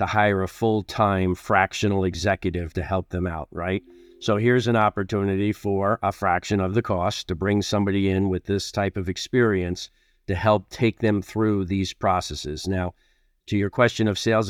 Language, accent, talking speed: English, American, 175 wpm